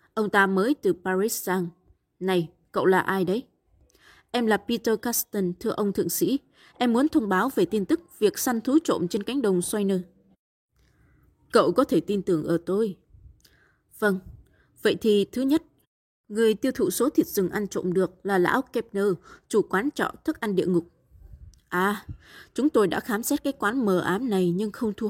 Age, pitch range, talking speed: 20-39, 180-235 Hz, 190 wpm